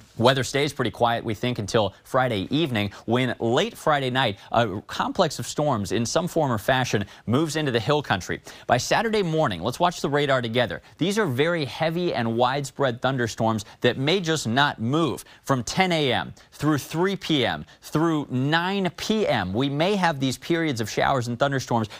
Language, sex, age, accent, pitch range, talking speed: English, male, 30-49, American, 115-160 Hz, 175 wpm